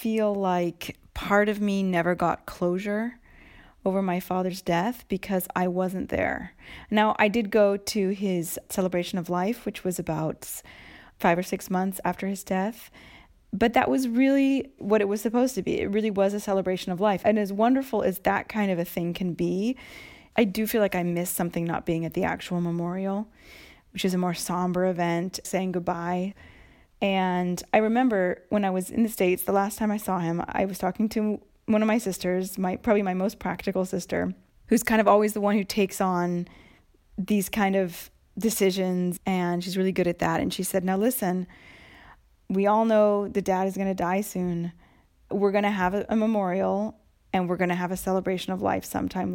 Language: English